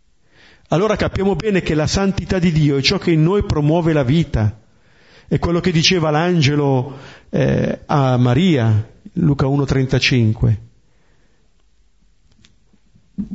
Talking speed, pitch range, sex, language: 110 wpm, 120-175 Hz, male, Italian